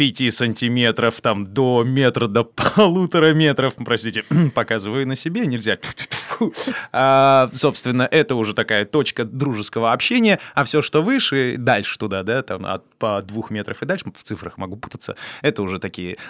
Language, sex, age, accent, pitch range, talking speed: Russian, male, 20-39, native, 120-175 Hz, 150 wpm